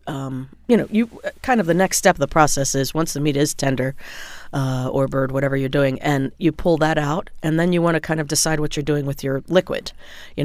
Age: 40-59